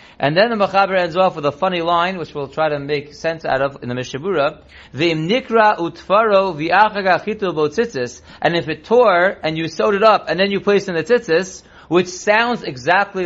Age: 30-49